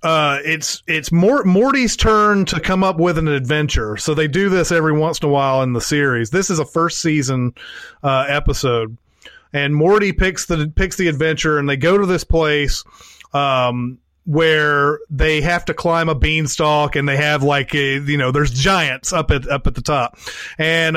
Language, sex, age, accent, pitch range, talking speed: English, male, 30-49, American, 150-180 Hz, 195 wpm